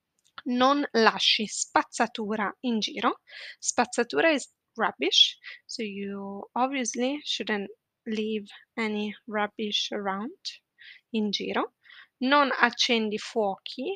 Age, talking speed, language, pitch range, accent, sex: 20-39, 90 wpm, Italian, 200-255 Hz, native, female